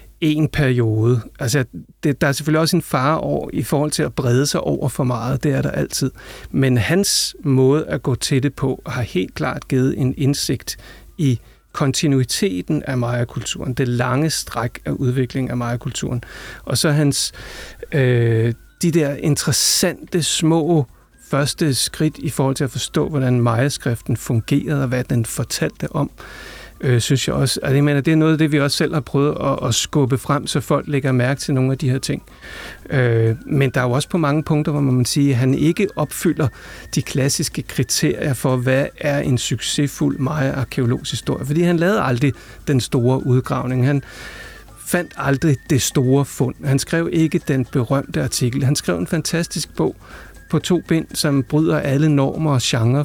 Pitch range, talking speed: 125-150 Hz, 175 wpm